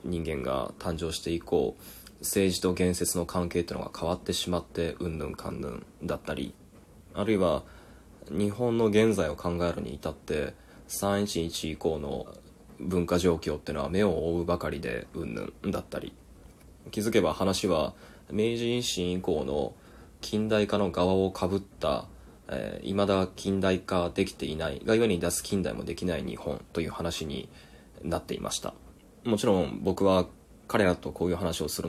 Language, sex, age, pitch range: Japanese, male, 20-39, 85-105 Hz